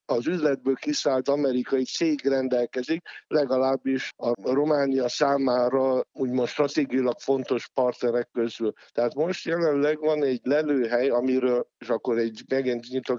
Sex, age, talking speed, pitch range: male, 60-79, 125 wpm, 120-150 Hz